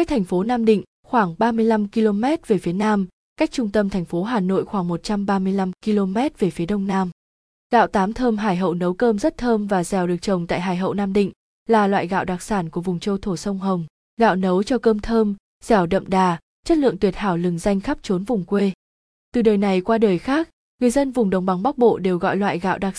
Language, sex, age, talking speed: Vietnamese, female, 20-39, 235 wpm